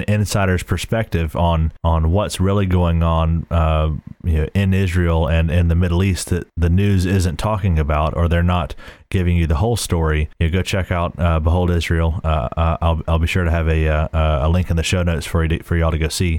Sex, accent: male, American